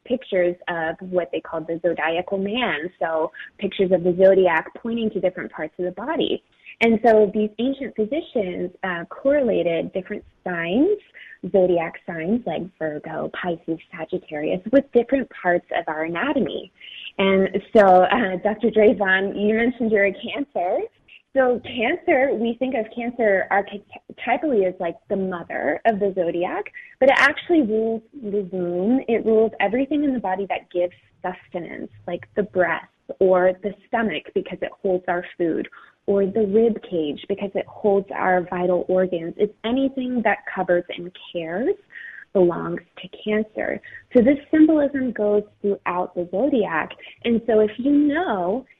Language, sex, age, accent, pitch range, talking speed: English, female, 20-39, American, 180-240 Hz, 150 wpm